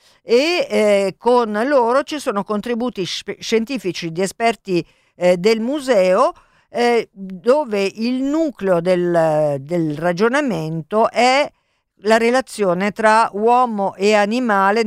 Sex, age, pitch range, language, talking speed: female, 50-69, 180-240 Hz, Italian, 110 wpm